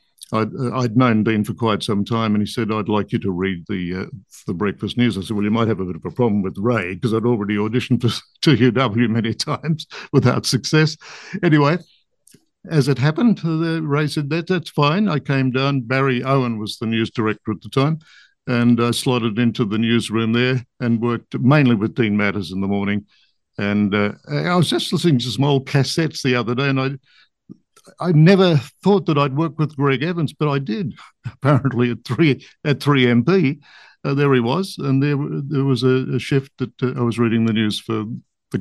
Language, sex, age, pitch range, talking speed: English, male, 60-79, 115-145 Hz, 210 wpm